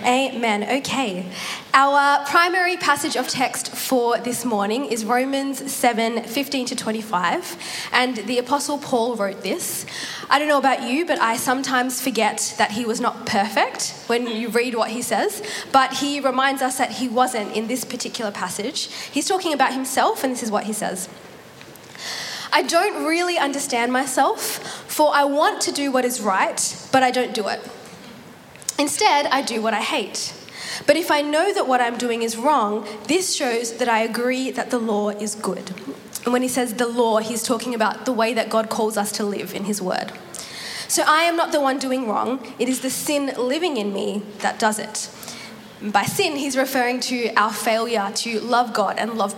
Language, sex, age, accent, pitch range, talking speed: English, female, 20-39, Australian, 220-270 Hz, 190 wpm